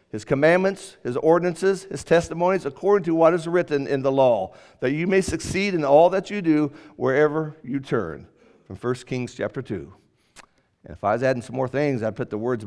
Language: English